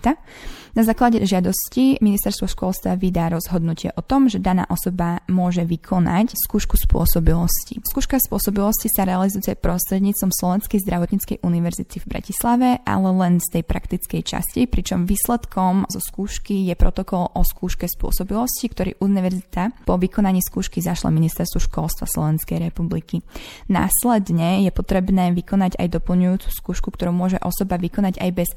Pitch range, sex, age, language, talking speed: 170-200 Hz, female, 20-39, Slovak, 135 wpm